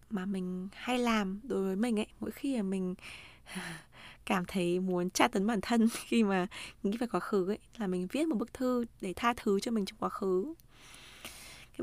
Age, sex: 20-39, female